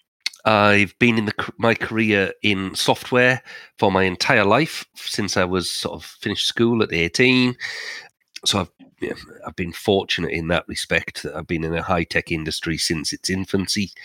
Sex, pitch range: male, 85-110 Hz